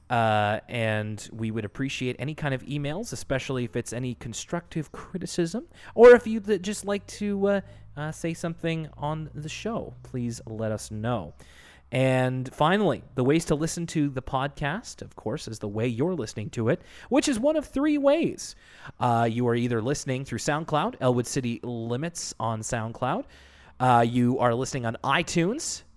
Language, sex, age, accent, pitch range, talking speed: English, male, 30-49, American, 115-160 Hz, 175 wpm